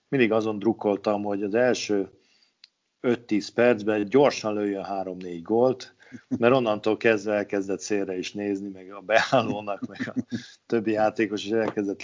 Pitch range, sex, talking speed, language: 100-110 Hz, male, 145 wpm, Hungarian